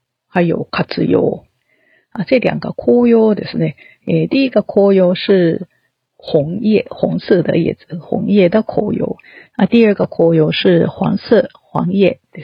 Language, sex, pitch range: Japanese, female, 170-215 Hz